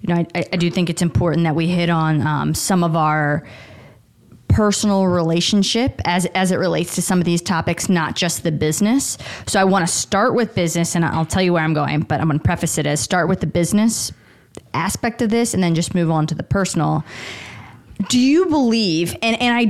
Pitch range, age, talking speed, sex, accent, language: 160-195 Hz, 20-39, 220 wpm, female, American, English